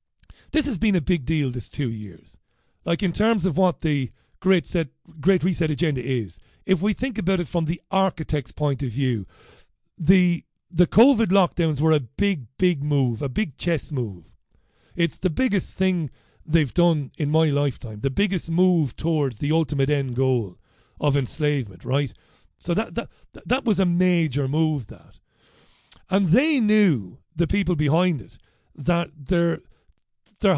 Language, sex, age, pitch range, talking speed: English, male, 40-59, 140-185 Hz, 165 wpm